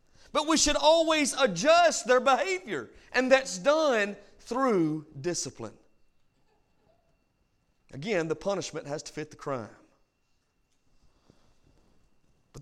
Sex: male